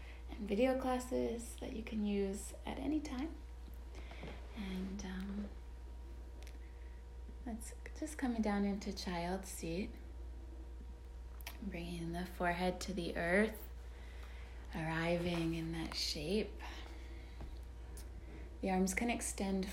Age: 20-39